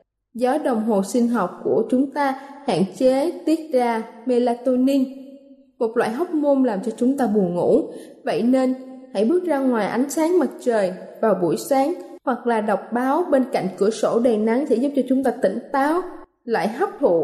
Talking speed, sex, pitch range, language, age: 195 wpm, female, 225-280 Hz, Vietnamese, 10-29